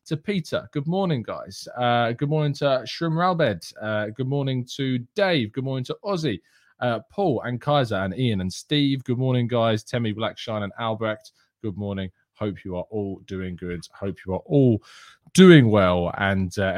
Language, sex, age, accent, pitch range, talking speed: English, male, 20-39, British, 100-130 Hz, 180 wpm